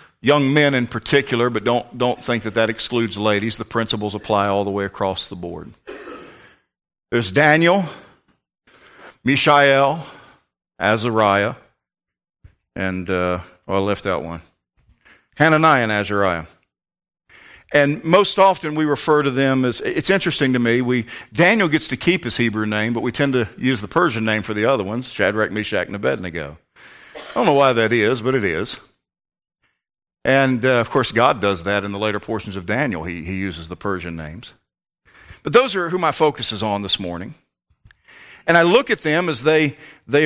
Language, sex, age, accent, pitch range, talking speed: English, male, 50-69, American, 105-140 Hz, 175 wpm